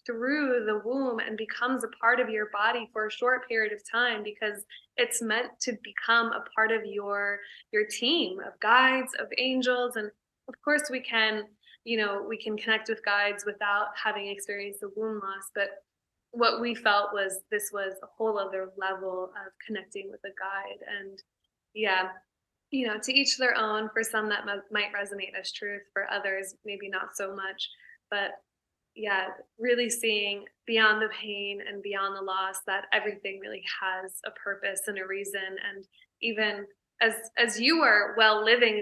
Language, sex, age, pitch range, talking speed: English, female, 20-39, 200-235 Hz, 175 wpm